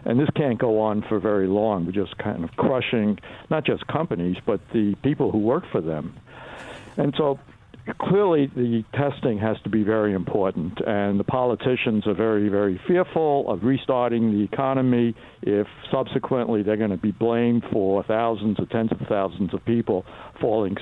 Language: English